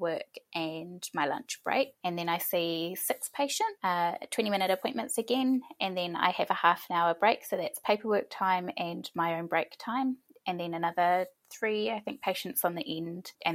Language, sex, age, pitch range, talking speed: English, female, 20-39, 165-215 Hz, 195 wpm